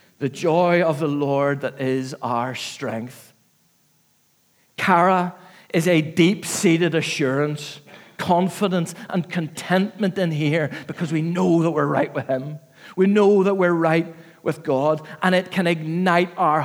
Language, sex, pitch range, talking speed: English, male, 145-180 Hz, 140 wpm